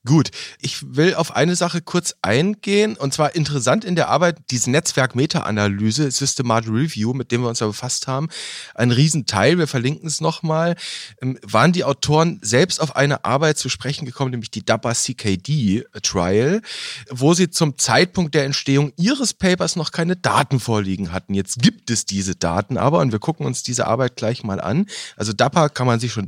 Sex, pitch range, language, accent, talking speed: male, 115-160 Hz, German, German, 180 wpm